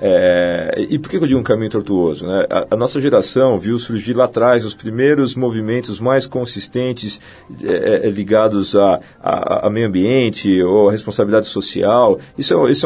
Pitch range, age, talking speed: 105-135 Hz, 40-59, 175 wpm